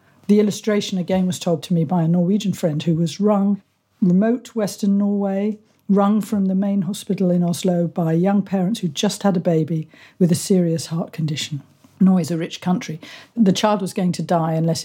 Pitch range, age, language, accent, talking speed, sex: 170-205 Hz, 50-69, English, British, 195 wpm, female